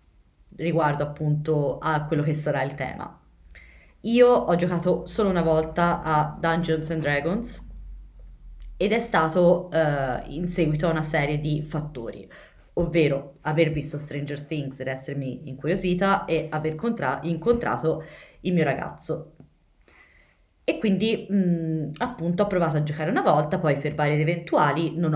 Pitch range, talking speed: 145-175 Hz, 140 wpm